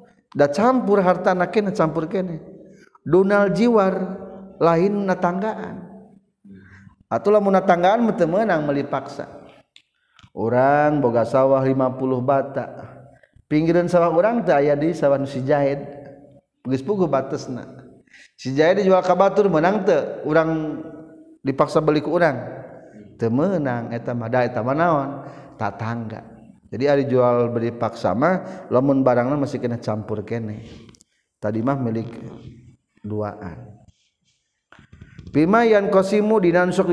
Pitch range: 125-185 Hz